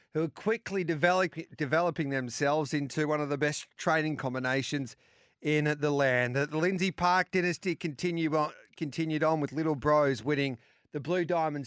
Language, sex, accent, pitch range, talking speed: English, male, Australian, 135-165 Hz, 145 wpm